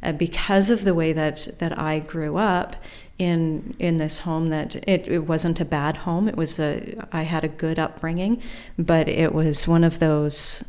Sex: female